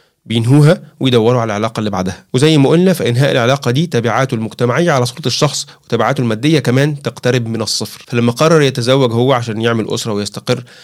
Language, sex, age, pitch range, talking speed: Arabic, male, 30-49, 120-140 Hz, 170 wpm